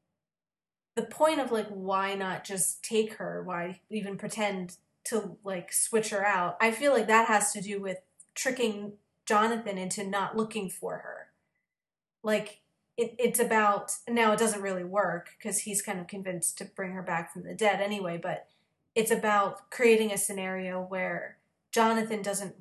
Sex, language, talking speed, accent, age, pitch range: female, English, 165 wpm, American, 30-49, 190-220 Hz